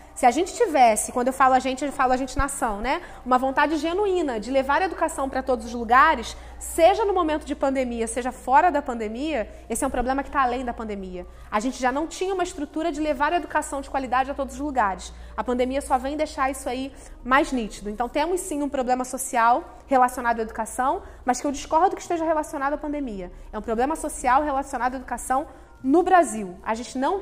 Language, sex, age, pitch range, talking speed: Portuguese, female, 20-39, 255-320 Hz, 220 wpm